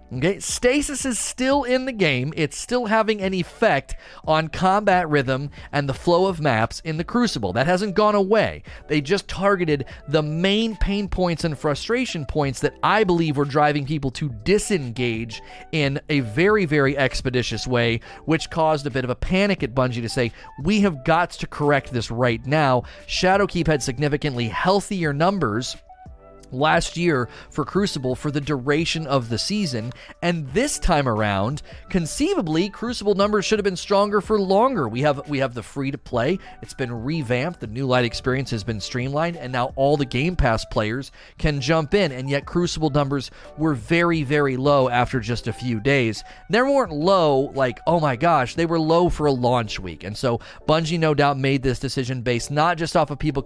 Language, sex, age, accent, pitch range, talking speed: English, male, 30-49, American, 130-175 Hz, 185 wpm